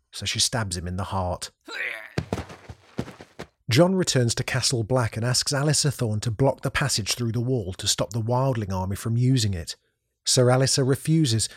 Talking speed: 175 wpm